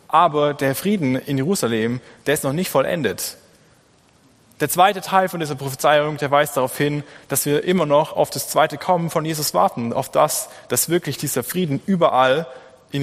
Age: 20-39